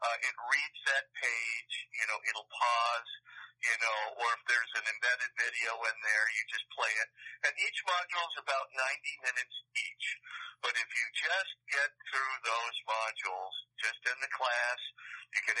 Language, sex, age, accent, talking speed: English, male, 50-69, American, 175 wpm